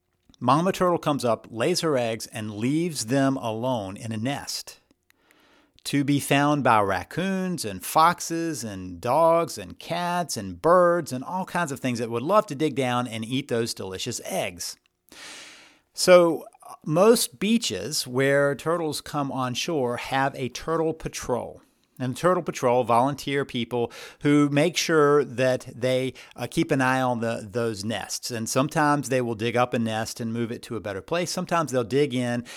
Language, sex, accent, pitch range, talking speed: English, male, American, 120-150 Hz, 170 wpm